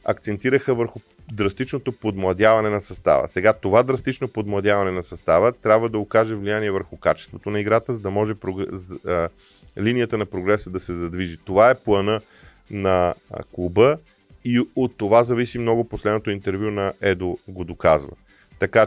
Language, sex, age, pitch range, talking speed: Bulgarian, male, 30-49, 90-110 Hz, 155 wpm